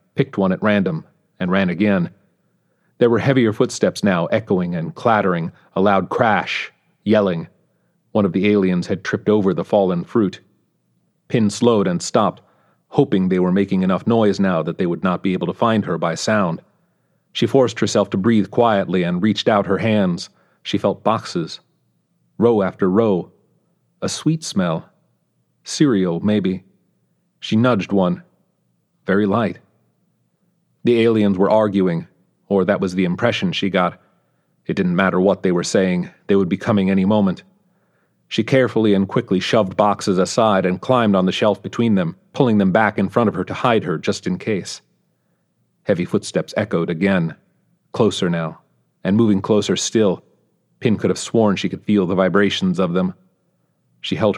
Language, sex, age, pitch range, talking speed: English, male, 40-59, 95-110 Hz, 170 wpm